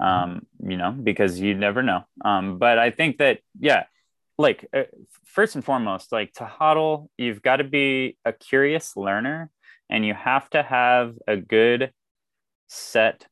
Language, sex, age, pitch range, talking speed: English, male, 20-39, 95-125 Hz, 160 wpm